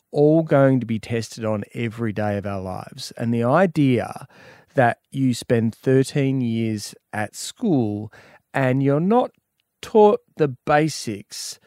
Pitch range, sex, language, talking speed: 115-145 Hz, male, English, 140 wpm